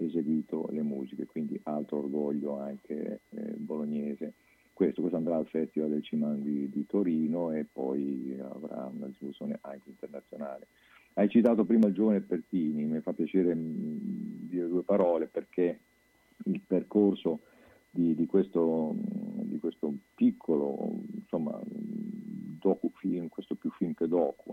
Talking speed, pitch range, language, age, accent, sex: 135 wpm, 75-105 Hz, Italian, 50-69, native, male